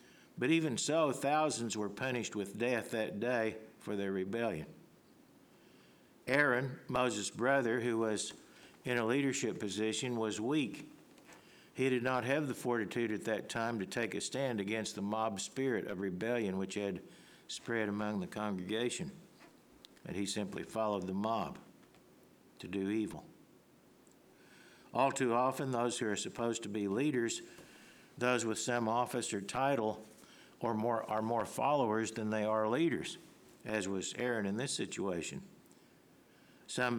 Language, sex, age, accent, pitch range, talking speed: English, male, 60-79, American, 105-125 Hz, 145 wpm